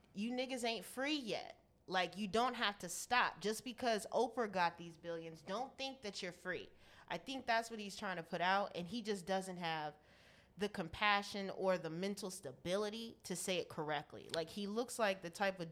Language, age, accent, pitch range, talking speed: English, 20-39, American, 170-200 Hz, 200 wpm